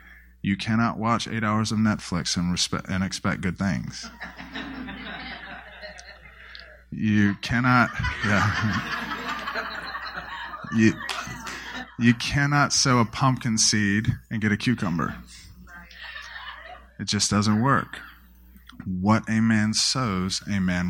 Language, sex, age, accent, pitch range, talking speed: English, male, 20-39, American, 85-110 Hz, 100 wpm